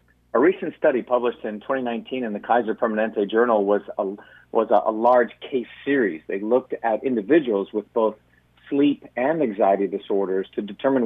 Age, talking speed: 50-69, 165 wpm